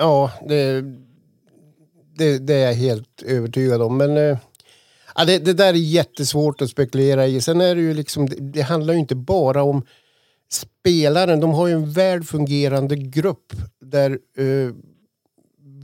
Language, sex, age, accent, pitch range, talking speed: Swedish, male, 50-69, native, 130-150 Hz, 150 wpm